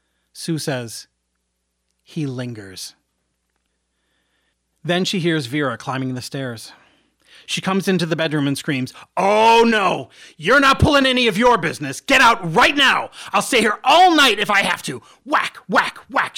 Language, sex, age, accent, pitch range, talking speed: English, male, 40-59, American, 110-160 Hz, 160 wpm